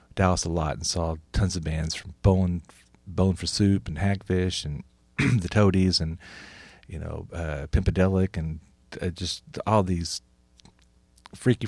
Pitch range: 85-105 Hz